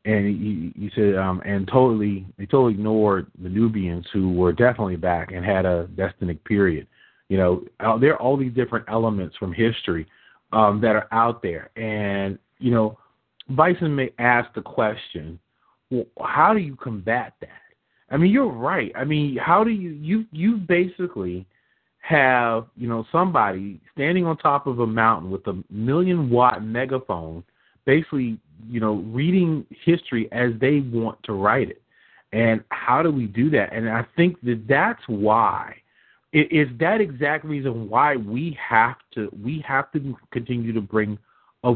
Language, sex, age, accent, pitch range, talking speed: English, male, 30-49, American, 105-140 Hz, 165 wpm